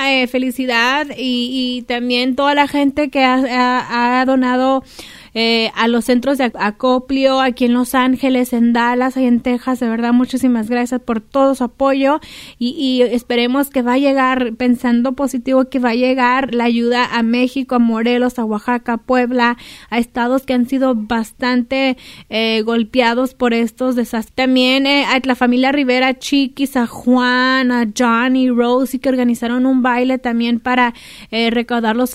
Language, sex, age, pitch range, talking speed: Spanish, female, 20-39, 245-265 Hz, 175 wpm